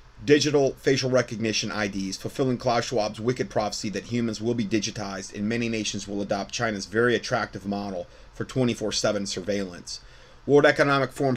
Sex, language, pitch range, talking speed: male, English, 100-120 Hz, 155 wpm